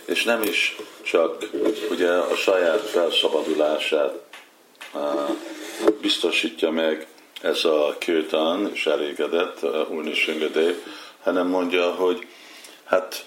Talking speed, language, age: 105 wpm, Hungarian, 50-69